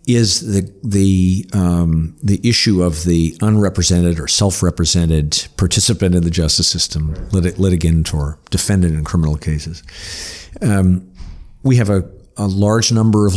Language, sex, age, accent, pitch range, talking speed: English, male, 50-69, American, 85-105 Hz, 140 wpm